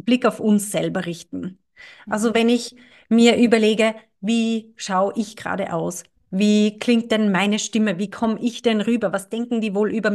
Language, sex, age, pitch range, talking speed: German, female, 30-49, 215-270 Hz, 175 wpm